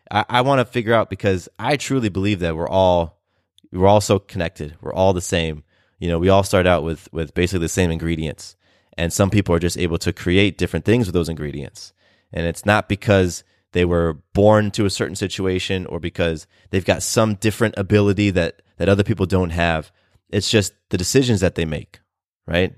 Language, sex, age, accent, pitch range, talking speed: English, male, 20-39, American, 85-105 Hz, 205 wpm